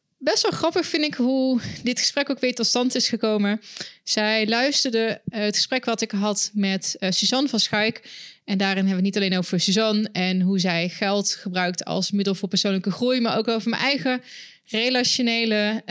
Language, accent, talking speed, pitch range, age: Dutch, Dutch, 195 wpm, 195-245 Hz, 20-39